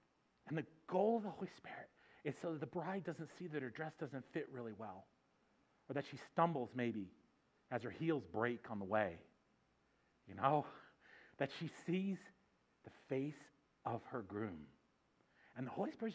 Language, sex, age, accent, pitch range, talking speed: English, male, 40-59, American, 120-200 Hz, 175 wpm